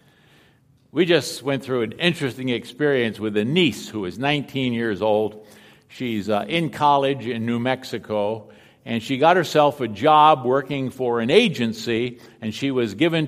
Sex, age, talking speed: male, 50-69, 165 wpm